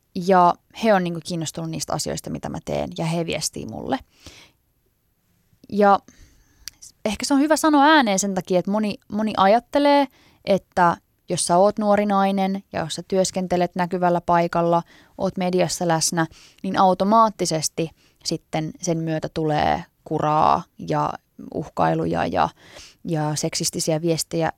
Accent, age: native, 20-39